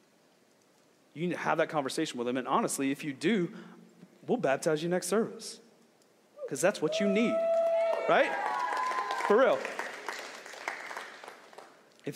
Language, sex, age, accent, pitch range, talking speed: English, male, 30-49, American, 175-215 Hz, 135 wpm